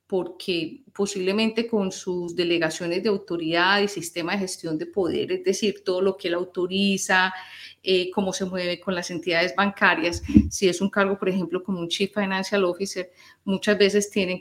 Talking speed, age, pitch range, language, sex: 175 wpm, 30-49, 190-235 Hz, Spanish, female